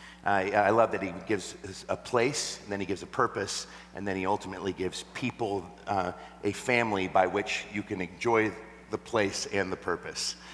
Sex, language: male, English